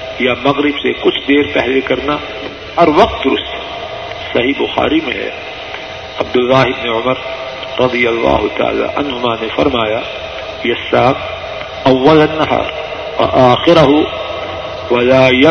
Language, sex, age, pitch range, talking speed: Urdu, male, 50-69, 120-150 Hz, 110 wpm